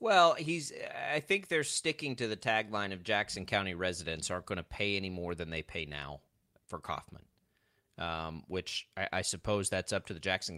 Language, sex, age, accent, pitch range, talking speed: English, male, 30-49, American, 95-115 Hz, 205 wpm